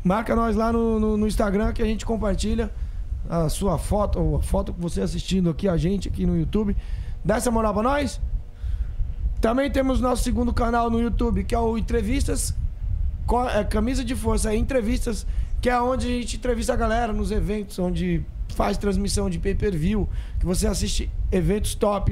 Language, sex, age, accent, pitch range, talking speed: Portuguese, male, 20-39, Brazilian, 170-240 Hz, 185 wpm